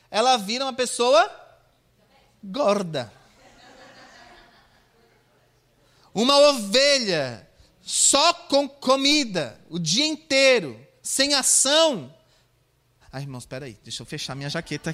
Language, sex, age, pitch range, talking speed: Portuguese, male, 30-49, 220-285 Hz, 90 wpm